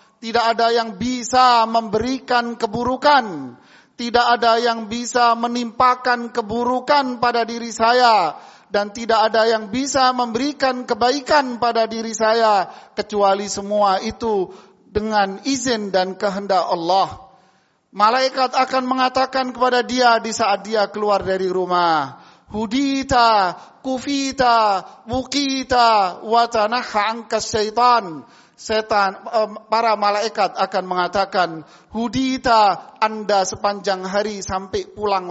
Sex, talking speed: male, 100 wpm